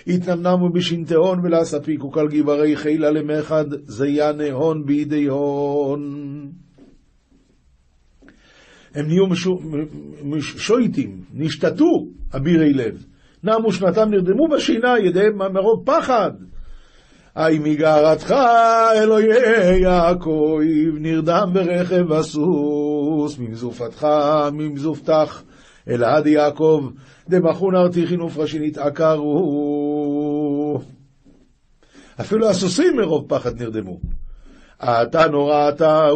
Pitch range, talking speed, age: 140-170 Hz, 90 wpm, 50-69